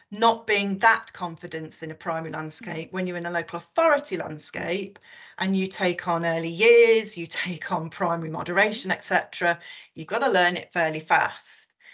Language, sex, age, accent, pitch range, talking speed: English, female, 40-59, British, 170-205 Hz, 170 wpm